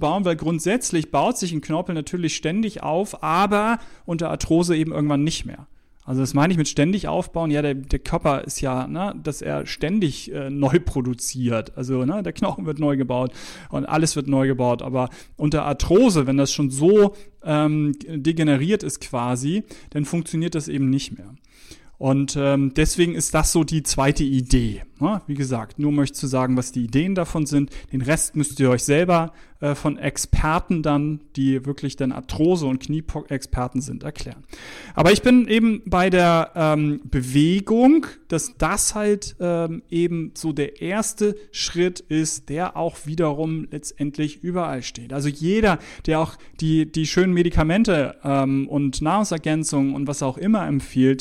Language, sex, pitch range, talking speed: German, male, 140-170 Hz, 170 wpm